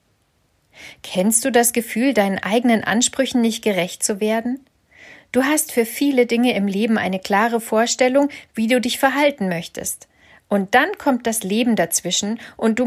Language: German